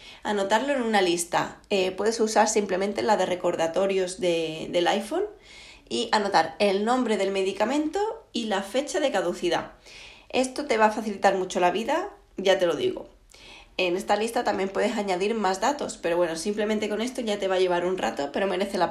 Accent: Spanish